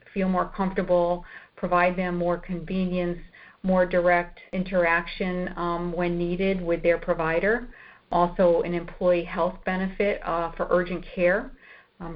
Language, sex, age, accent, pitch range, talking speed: English, female, 50-69, American, 170-180 Hz, 130 wpm